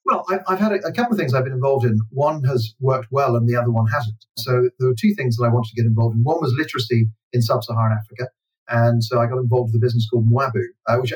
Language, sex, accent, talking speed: English, male, British, 285 wpm